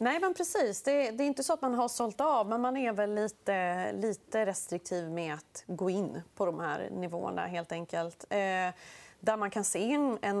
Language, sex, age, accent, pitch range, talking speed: Swedish, female, 30-49, native, 180-225 Hz, 210 wpm